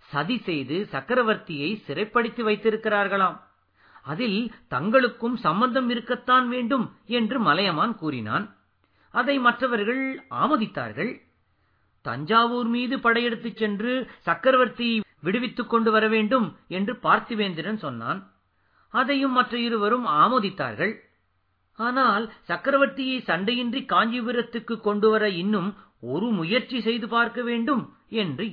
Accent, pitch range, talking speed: native, 185-245 Hz, 95 wpm